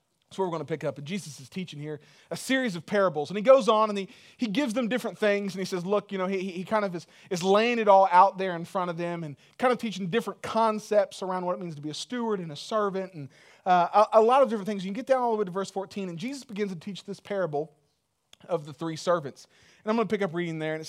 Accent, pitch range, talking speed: American, 165-210 Hz, 300 wpm